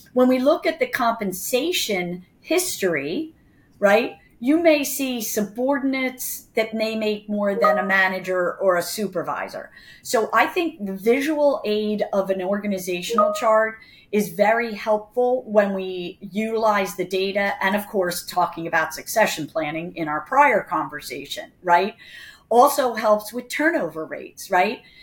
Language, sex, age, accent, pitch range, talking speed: English, female, 40-59, American, 195-255 Hz, 140 wpm